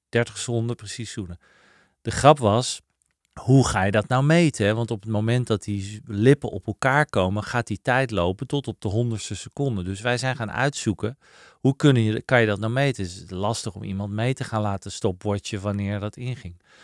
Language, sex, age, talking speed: Dutch, male, 40-59, 200 wpm